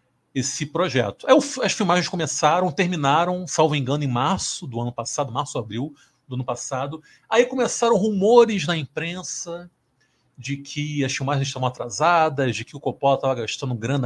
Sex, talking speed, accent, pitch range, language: male, 155 wpm, Brazilian, 130-170 Hz, Portuguese